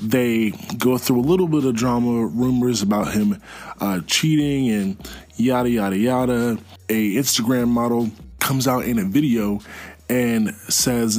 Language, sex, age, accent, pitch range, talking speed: English, male, 20-39, American, 105-125 Hz, 145 wpm